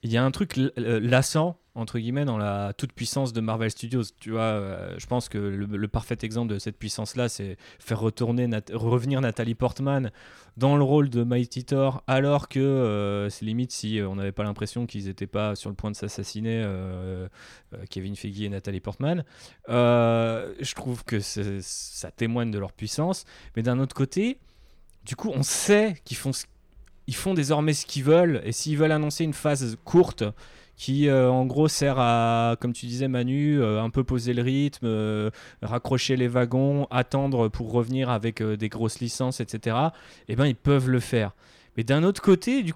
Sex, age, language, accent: male, 20-39, French, French